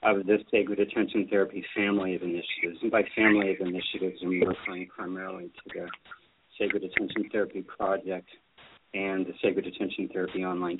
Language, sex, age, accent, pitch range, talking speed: English, male, 40-59, American, 95-115 Hz, 160 wpm